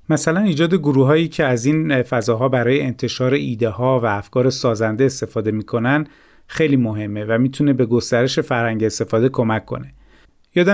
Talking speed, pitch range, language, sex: 150 wpm, 125-150 Hz, Persian, male